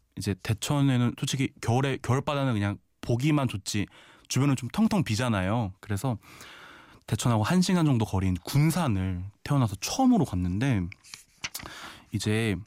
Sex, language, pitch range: male, Korean, 100-135 Hz